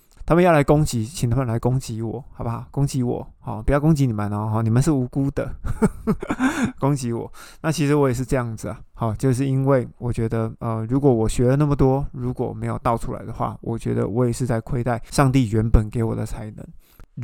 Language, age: Chinese, 20-39